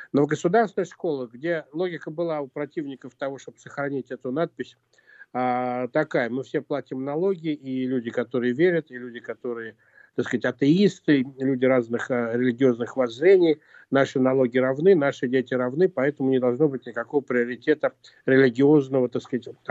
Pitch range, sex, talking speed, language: 120-150 Hz, male, 145 wpm, Russian